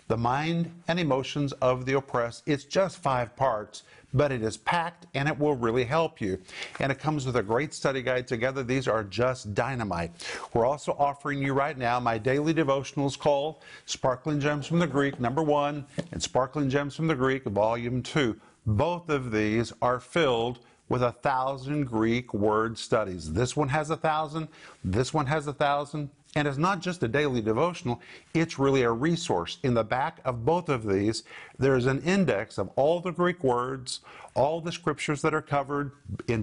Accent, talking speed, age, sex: American, 190 wpm, 50-69, male